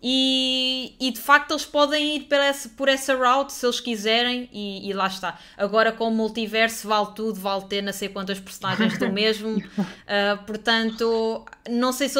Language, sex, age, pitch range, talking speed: Portuguese, female, 20-39, 205-250 Hz, 180 wpm